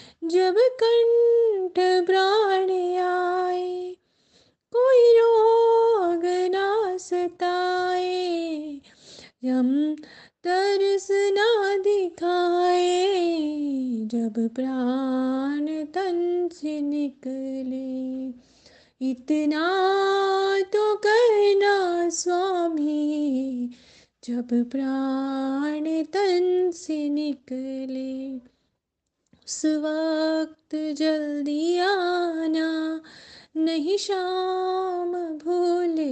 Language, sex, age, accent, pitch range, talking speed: Hindi, female, 30-49, native, 290-370 Hz, 55 wpm